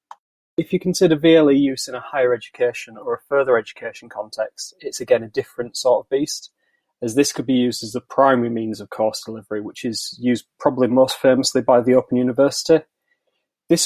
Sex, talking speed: male, 190 wpm